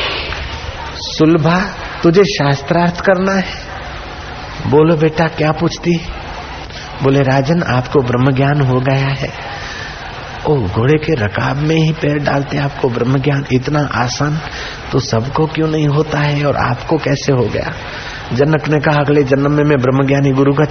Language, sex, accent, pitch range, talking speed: Hindi, male, native, 120-140 Hz, 140 wpm